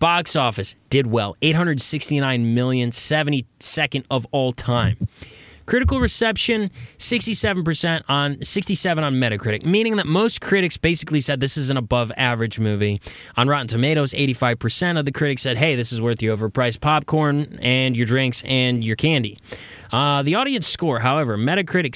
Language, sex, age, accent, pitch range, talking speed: English, male, 20-39, American, 115-155 Hz, 155 wpm